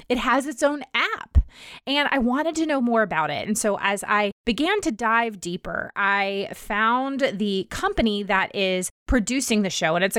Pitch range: 190-245 Hz